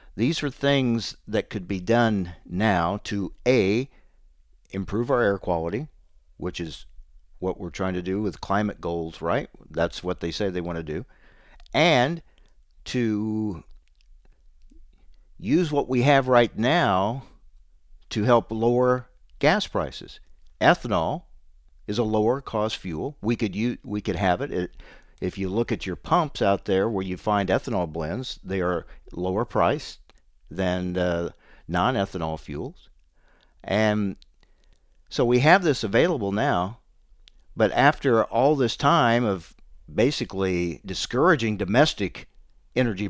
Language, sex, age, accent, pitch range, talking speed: English, male, 50-69, American, 85-120 Hz, 135 wpm